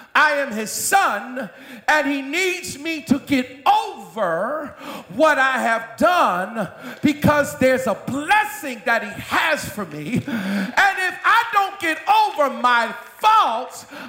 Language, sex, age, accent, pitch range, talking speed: English, male, 50-69, American, 225-315 Hz, 135 wpm